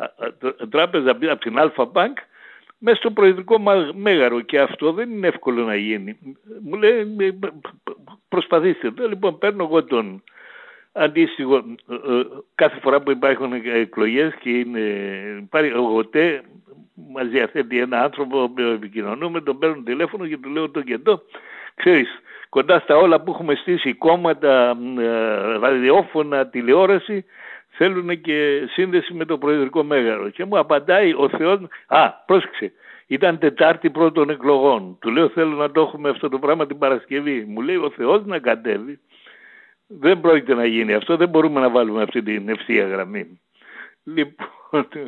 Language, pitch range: Greek, 130-185 Hz